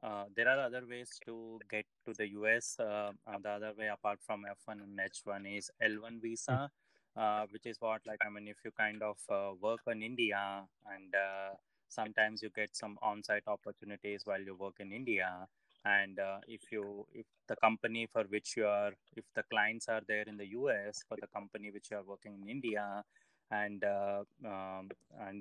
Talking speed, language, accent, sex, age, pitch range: 195 wpm, Marathi, native, male, 20-39, 100-110 Hz